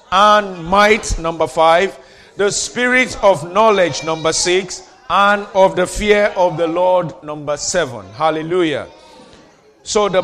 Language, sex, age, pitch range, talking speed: English, male, 40-59, 160-195 Hz, 130 wpm